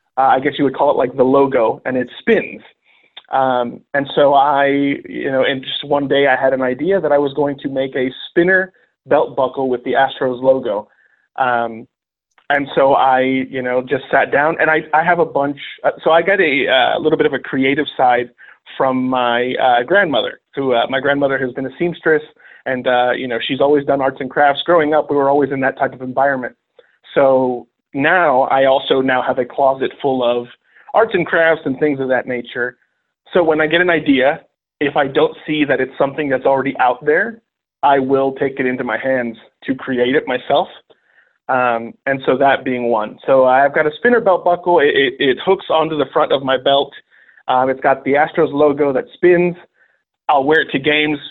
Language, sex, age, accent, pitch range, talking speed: English, male, 30-49, American, 130-150 Hz, 210 wpm